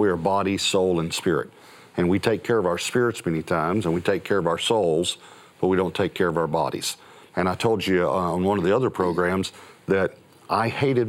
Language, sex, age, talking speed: English, male, 50-69, 235 wpm